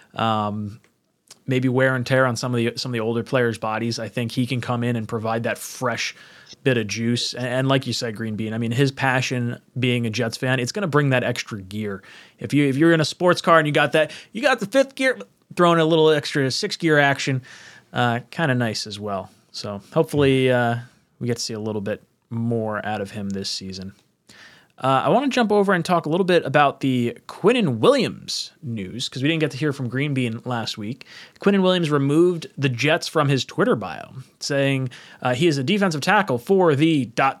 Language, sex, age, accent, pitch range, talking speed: English, male, 20-39, American, 120-165 Hz, 230 wpm